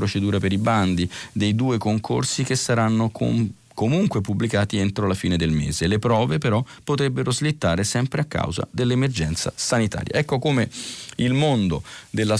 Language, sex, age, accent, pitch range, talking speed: Italian, male, 40-59, native, 95-125 Hz, 155 wpm